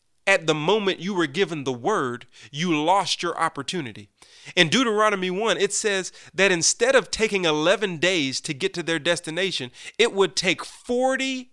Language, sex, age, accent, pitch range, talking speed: English, male, 40-59, American, 150-205 Hz, 165 wpm